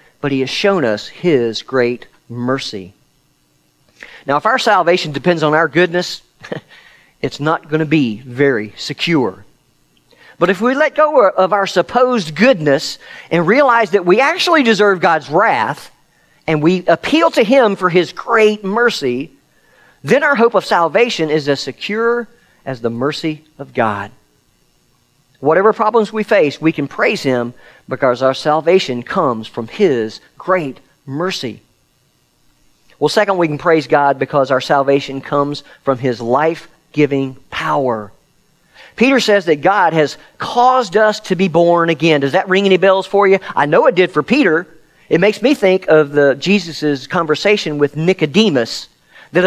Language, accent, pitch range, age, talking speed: English, American, 140-210 Hz, 40-59, 155 wpm